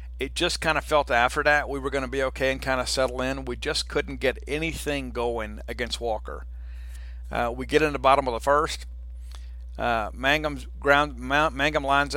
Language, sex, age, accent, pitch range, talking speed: English, male, 50-69, American, 115-140 Hz, 200 wpm